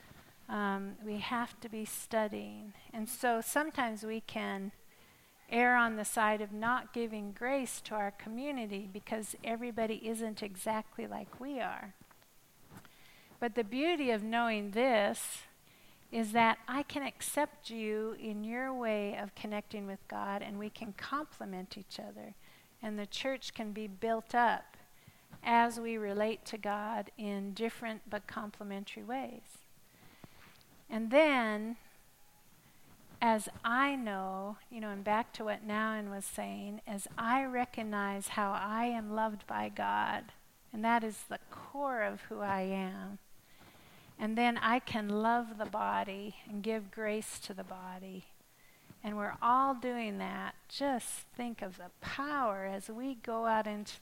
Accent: American